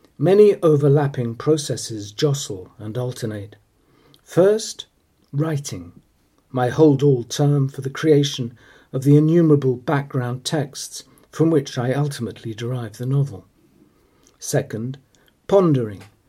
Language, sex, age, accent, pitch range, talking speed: English, male, 50-69, British, 120-150 Hz, 105 wpm